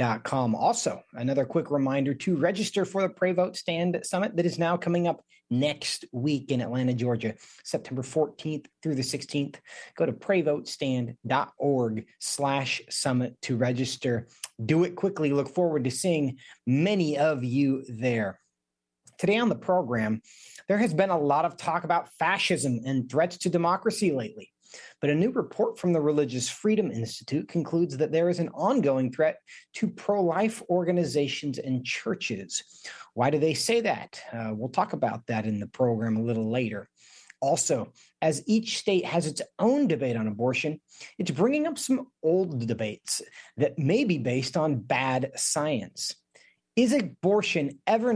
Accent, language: American, English